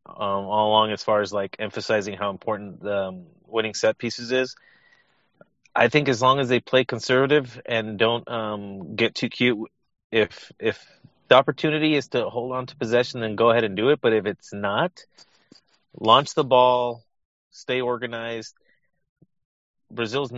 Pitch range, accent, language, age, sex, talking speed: 110-125 Hz, American, English, 30-49, male, 165 wpm